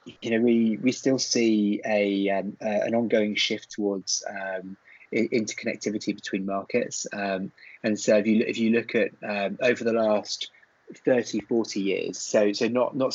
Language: English